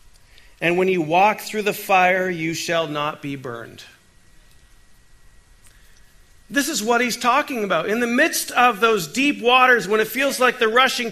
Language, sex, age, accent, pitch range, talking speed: English, male, 40-59, American, 165-235 Hz, 165 wpm